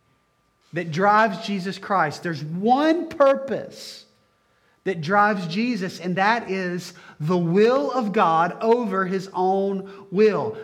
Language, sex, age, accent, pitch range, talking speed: English, male, 40-59, American, 165-225 Hz, 120 wpm